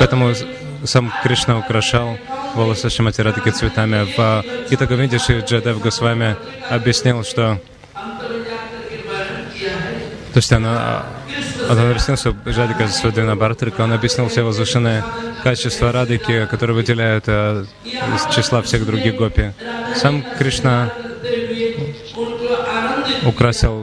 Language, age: Russian, 20-39